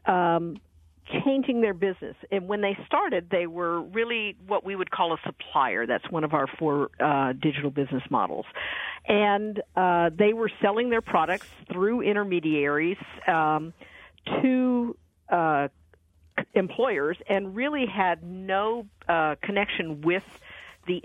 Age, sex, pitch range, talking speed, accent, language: 50-69, female, 155-205 Hz, 135 wpm, American, English